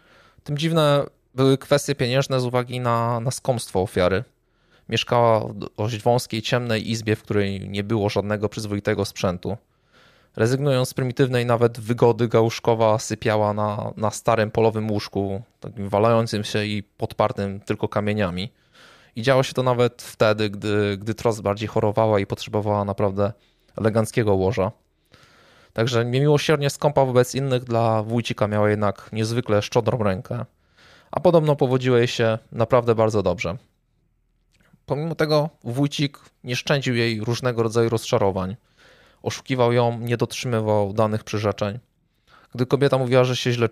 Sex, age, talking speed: male, 20-39, 135 wpm